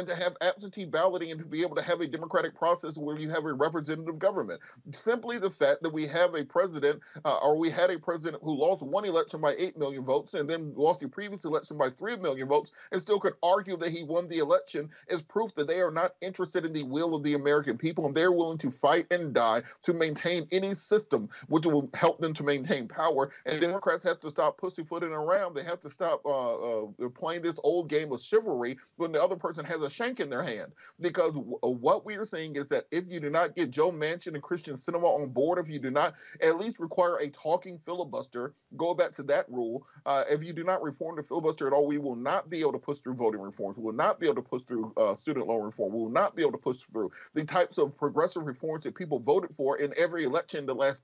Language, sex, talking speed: English, male, 250 wpm